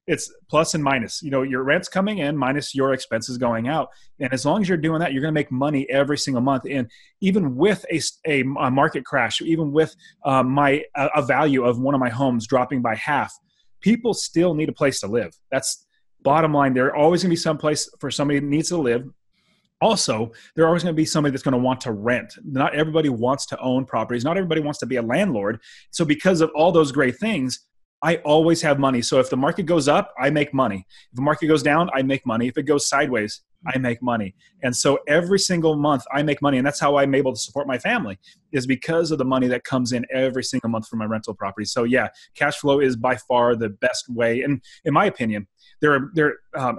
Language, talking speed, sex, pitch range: English, 235 wpm, male, 125-150 Hz